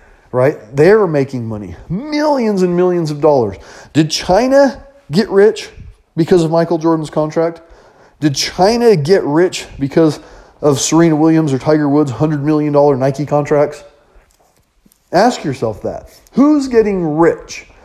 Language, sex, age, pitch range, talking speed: English, male, 30-49, 130-185 Hz, 130 wpm